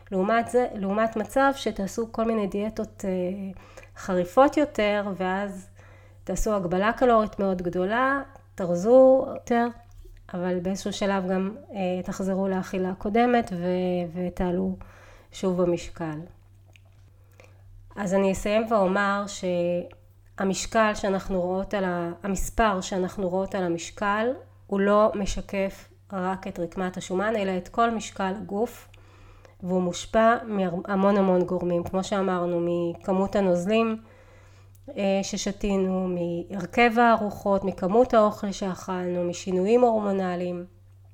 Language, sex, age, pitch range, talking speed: Hebrew, female, 30-49, 175-210 Hz, 105 wpm